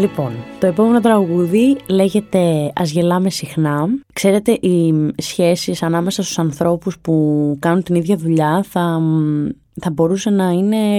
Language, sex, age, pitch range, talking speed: Greek, female, 20-39, 160-205 Hz, 130 wpm